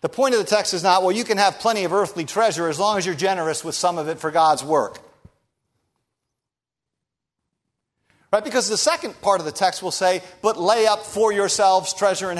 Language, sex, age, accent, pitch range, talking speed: English, male, 50-69, American, 140-200 Hz, 215 wpm